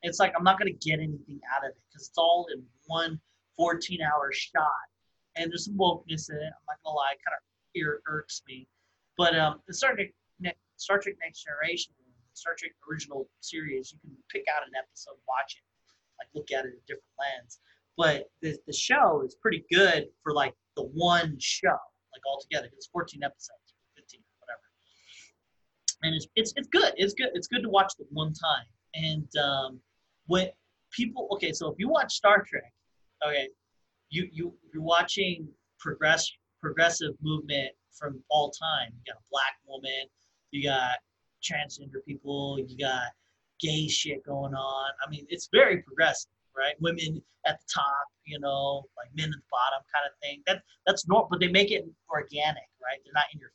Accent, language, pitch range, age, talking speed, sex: American, English, 140-175 Hz, 30-49, 185 wpm, male